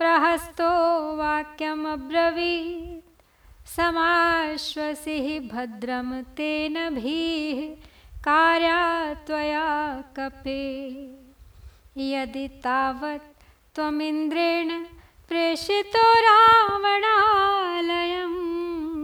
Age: 30-49